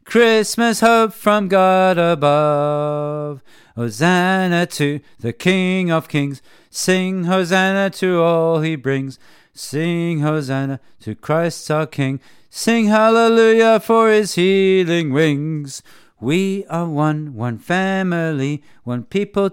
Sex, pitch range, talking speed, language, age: male, 150-195 Hz, 110 wpm, English, 40-59